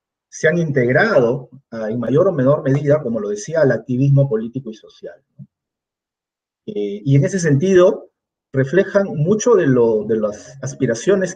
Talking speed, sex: 155 wpm, male